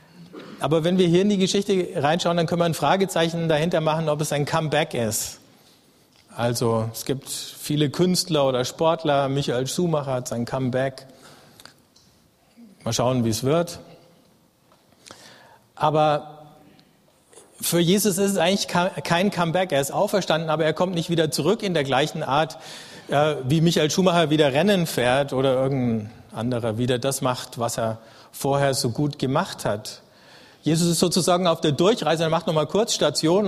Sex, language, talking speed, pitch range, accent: male, German, 155 wpm, 135-175 Hz, German